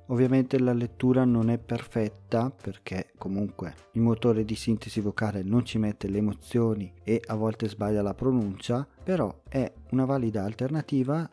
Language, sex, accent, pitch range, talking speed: Italian, male, native, 105-140 Hz, 155 wpm